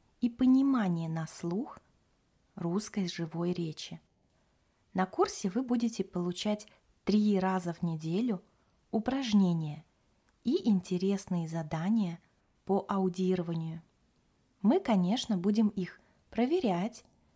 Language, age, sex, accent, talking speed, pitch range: Russian, 20-39, female, native, 95 wpm, 170-210 Hz